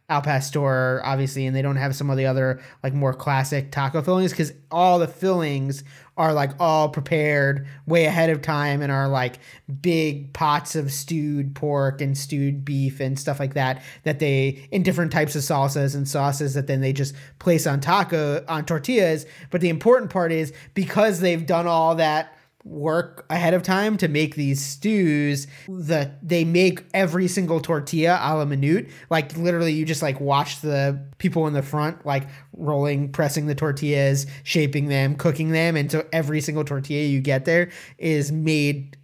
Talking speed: 180 wpm